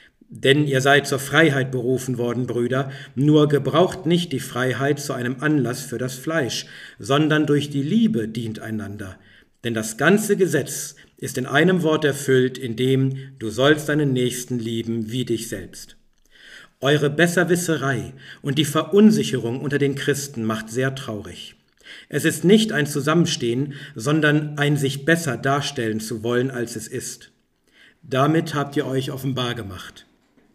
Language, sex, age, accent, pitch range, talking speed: German, male, 50-69, German, 115-150 Hz, 150 wpm